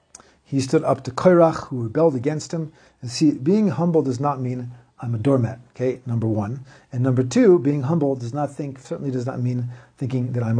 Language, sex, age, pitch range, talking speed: English, male, 50-69, 120-145 Hz, 210 wpm